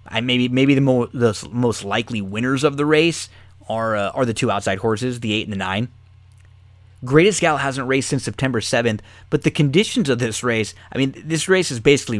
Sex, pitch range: male, 100-135 Hz